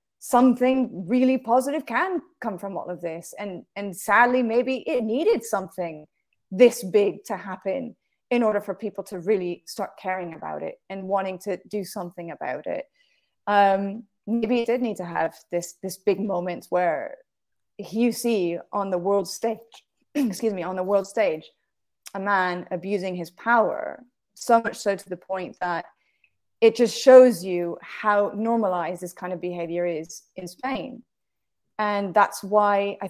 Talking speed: 165 wpm